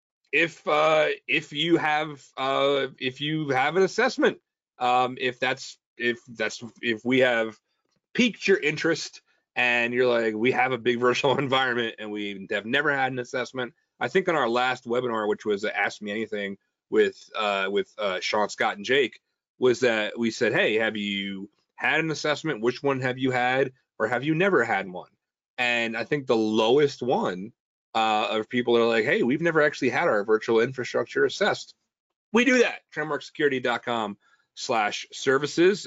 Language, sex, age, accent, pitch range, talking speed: English, male, 30-49, American, 115-150 Hz, 175 wpm